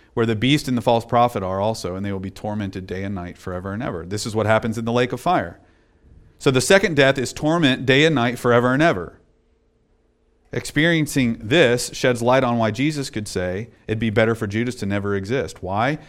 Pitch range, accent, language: 105-130 Hz, American, English